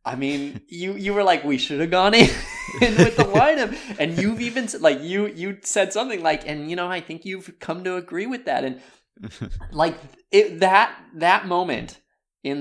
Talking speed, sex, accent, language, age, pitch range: 195 wpm, male, American, English, 20-39, 120-185 Hz